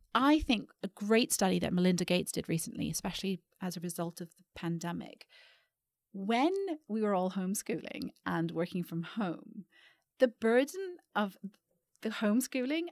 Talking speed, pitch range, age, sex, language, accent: 145 wpm, 175-245 Hz, 40-59, female, English, British